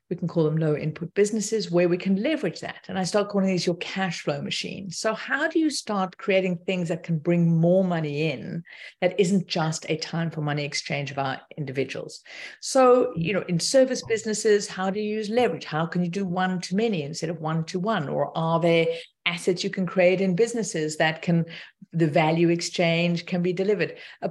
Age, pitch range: 50-69, 165-210 Hz